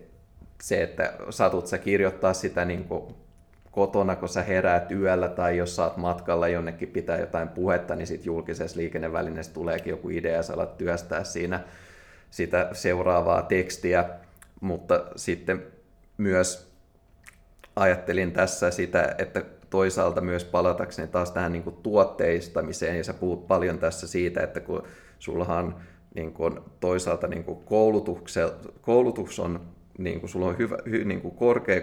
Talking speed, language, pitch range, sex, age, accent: 130 wpm, Finnish, 85-95 Hz, male, 30-49, native